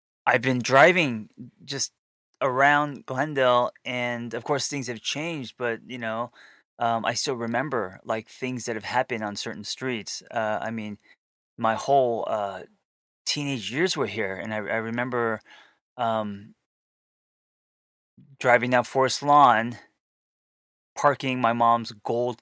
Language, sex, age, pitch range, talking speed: English, male, 20-39, 105-125 Hz, 135 wpm